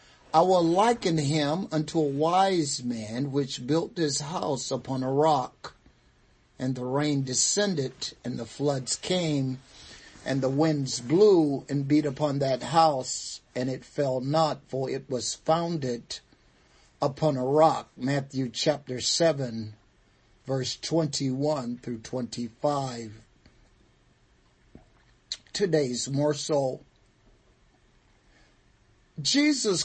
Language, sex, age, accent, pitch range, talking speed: English, male, 50-69, American, 125-160 Hz, 105 wpm